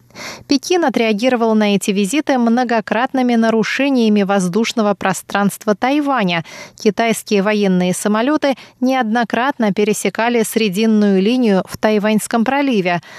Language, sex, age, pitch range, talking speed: Russian, female, 20-39, 195-245 Hz, 90 wpm